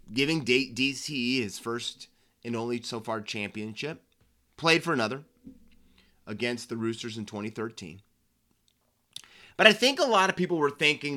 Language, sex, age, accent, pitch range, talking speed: English, male, 30-49, American, 115-150 Hz, 140 wpm